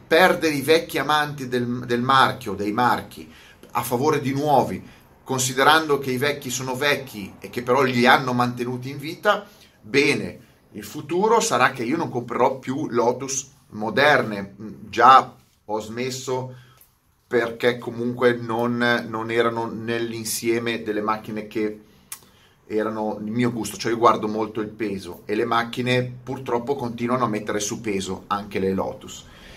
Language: Italian